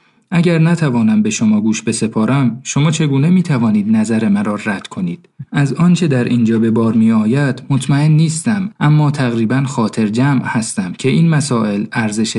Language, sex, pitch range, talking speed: Persian, male, 110-160 Hz, 155 wpm